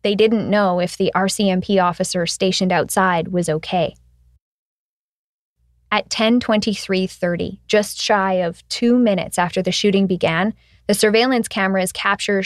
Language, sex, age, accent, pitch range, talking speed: English, female, 20-39, American, 175-215 Hz, 125 wpm